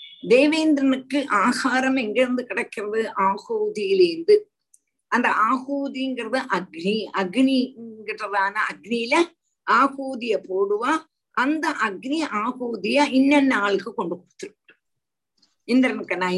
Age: 50-69